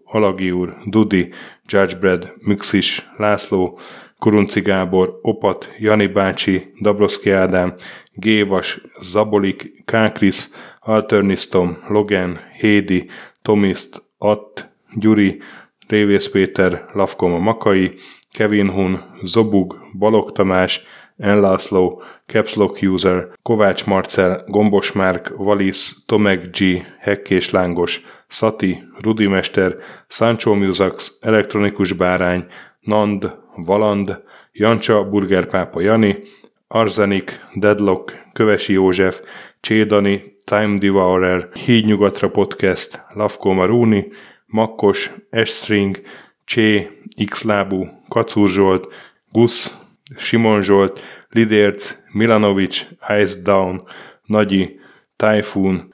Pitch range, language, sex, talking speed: 95-105 Hz, Hungarian, male, 85 wpm